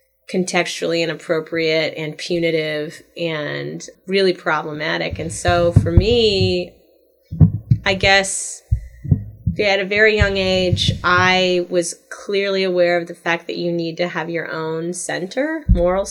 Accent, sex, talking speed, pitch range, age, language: American, female, 125 wpm, 160-190 Hz, 20-39, English